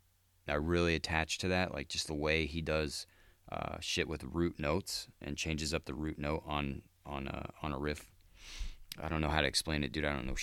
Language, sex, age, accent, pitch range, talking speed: English, male, 30-49, American, 70-90 Hz, 225 wpm